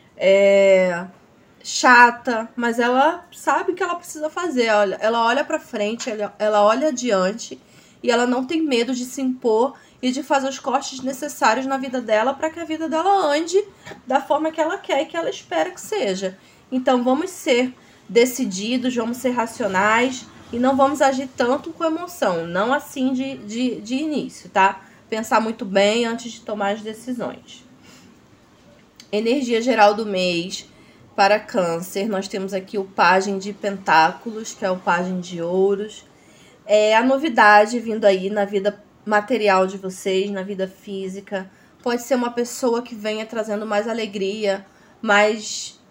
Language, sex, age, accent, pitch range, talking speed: Portuguese, female, 20-39, Brazilian, 205-265 Hz, 160 wpm